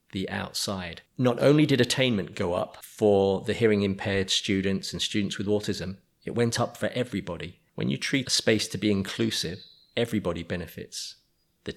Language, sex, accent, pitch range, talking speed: English, male, British, 95-110 Hz, 170 wpm